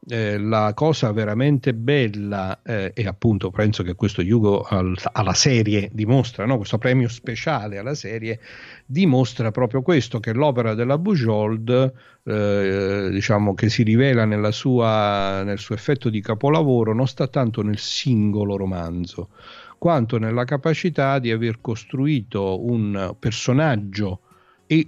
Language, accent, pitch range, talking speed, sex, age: Italian, native, 100-130 Hz, 135 wpm, male, 50-69